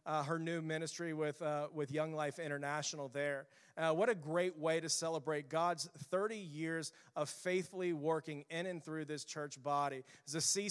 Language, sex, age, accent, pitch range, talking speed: English, male, 40-59, American, 155-170 Hz, 185 wpm